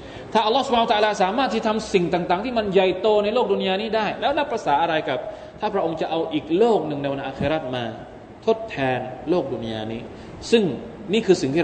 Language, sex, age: Thai, male, 20-39